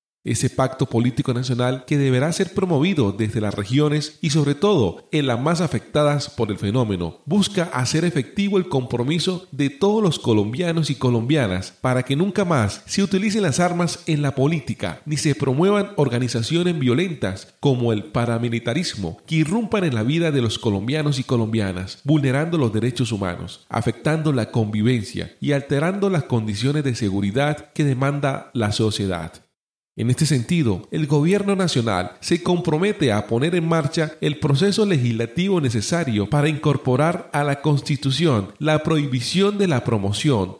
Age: 40-59